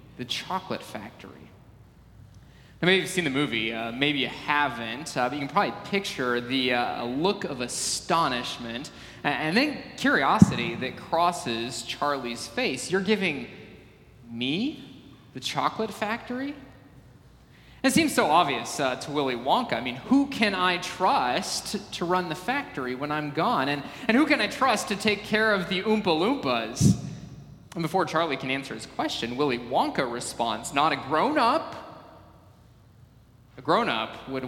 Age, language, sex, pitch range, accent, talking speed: 20-39, English, male, 125-180 Hz, American, 150 wpm